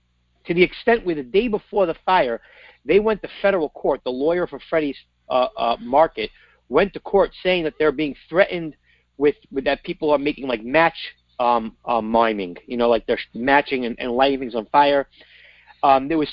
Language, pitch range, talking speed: English, 120-155 Hz, 200 wpm